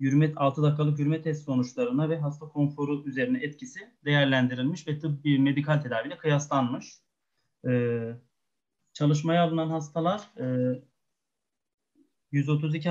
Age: 30-49